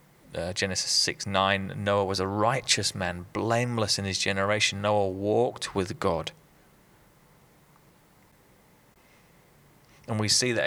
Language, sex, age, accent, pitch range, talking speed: English, male, 30-49, British, 95-115 Hz, 120 wpm